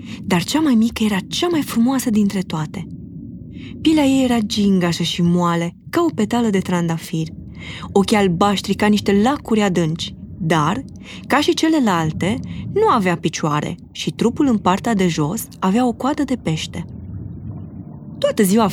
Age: 20-39